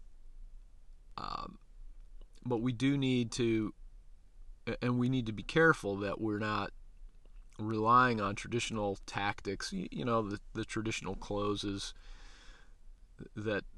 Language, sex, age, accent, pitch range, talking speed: English, male, 40-59, American, 95-120 Hz, 120 wpm